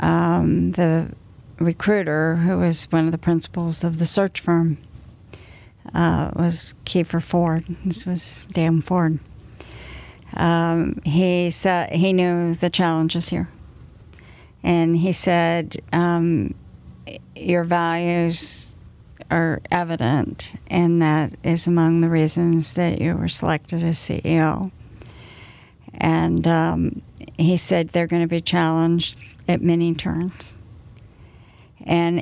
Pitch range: 125-175 Hz